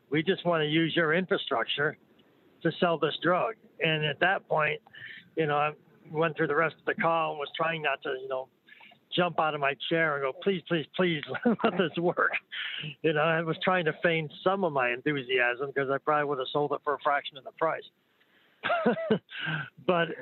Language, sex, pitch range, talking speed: English, male, 140-170 Hz, 210 wpm